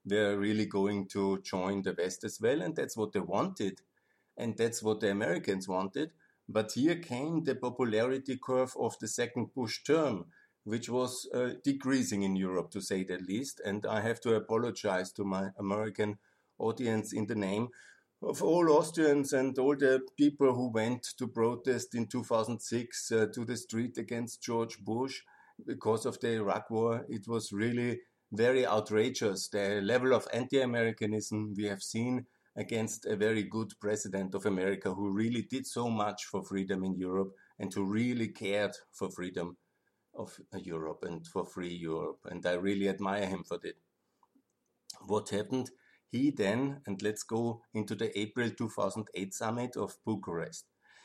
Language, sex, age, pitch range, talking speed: German, male, 50-69, 100-120 Hz, 165 wpm